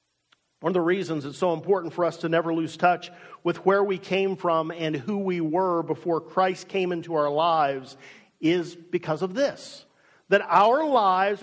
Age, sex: 50-69, male